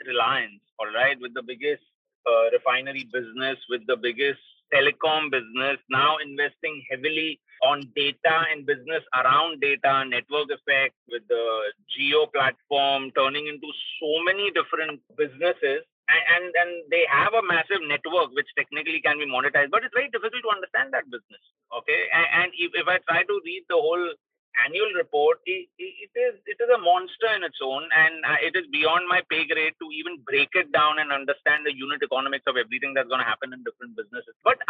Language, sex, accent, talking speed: English, male, Indian, 180 wpm